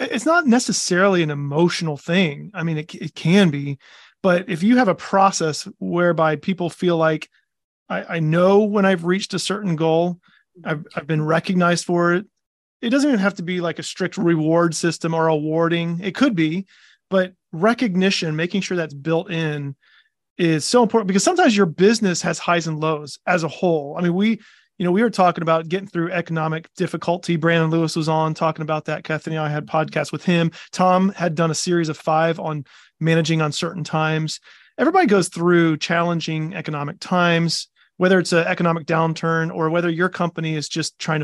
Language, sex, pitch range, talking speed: English, male, 160-190 Hz, 190 wpm